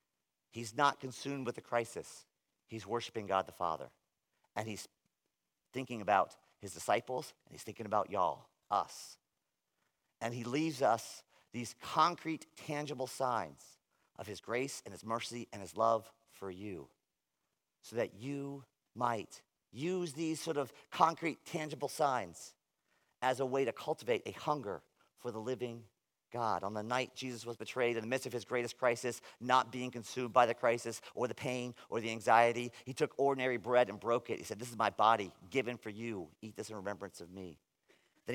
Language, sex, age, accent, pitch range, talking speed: English, male, 50-69, American, 110-130 Hz, 175 wpm